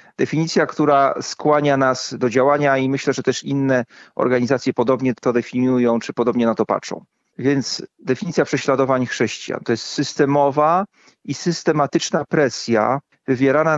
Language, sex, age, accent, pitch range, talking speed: Polish, male, 40-59, native, 130-155 Hz, 135 wpm